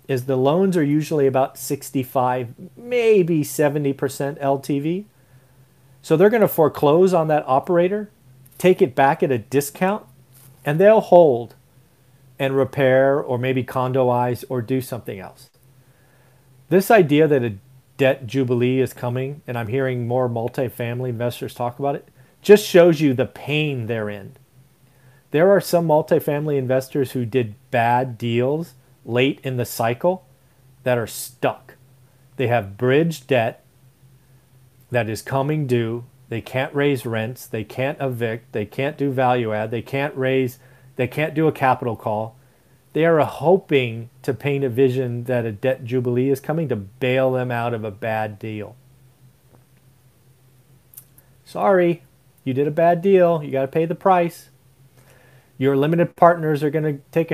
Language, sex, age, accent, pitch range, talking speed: English, male, 40-59, American, 125-145 Hz, 150 wpm